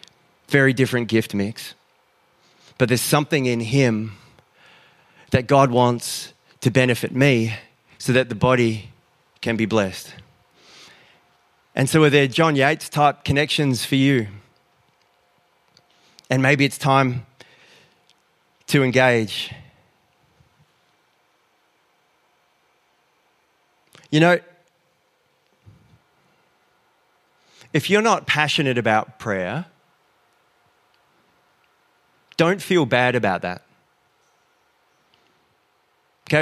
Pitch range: 120-155 Hz